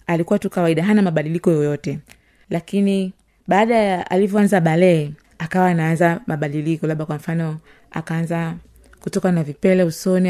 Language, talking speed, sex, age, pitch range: Swahili, 130 wpm, female, 30-49, 155-200 Hz